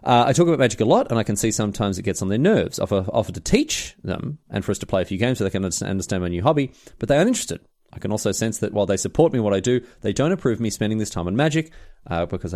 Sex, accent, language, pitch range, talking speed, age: male, Australian, English, 100-135 Hz, 310 wpm, 30-49